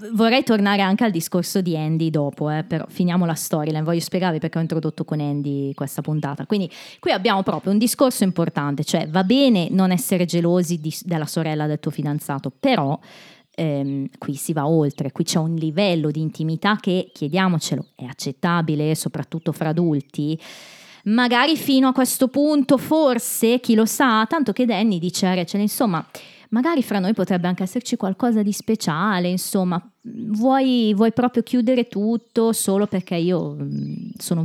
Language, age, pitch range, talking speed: Italian, 20-39, 155-220 Hz, 165 wpm